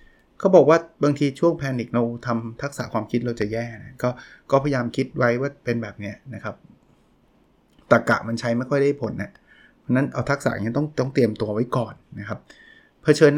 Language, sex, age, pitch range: Thai, male, 20-39, 120-145 Hz